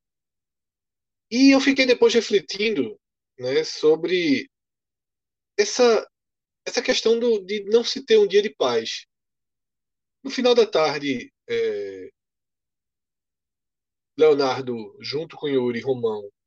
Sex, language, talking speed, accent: male, Portuguese, 100 wpm, Brazilian